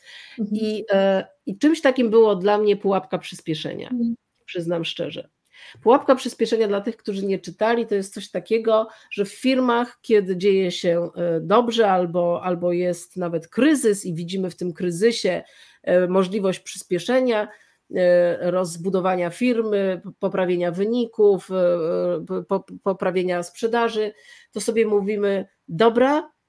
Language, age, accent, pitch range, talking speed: Polish, 40-59, native, 180-225 Hz, 115 wpm